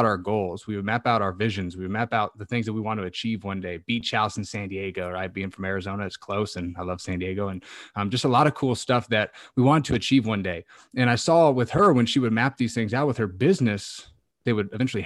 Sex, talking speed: male, 275 wpm